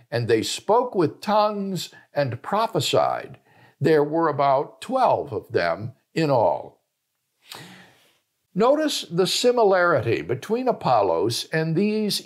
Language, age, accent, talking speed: English, 60-79, American, 110 wpm